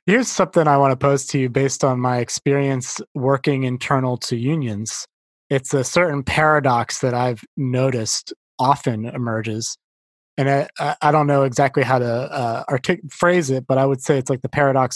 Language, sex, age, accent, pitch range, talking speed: English, male, 20-39, American, 120-145 Hz, 180 wpm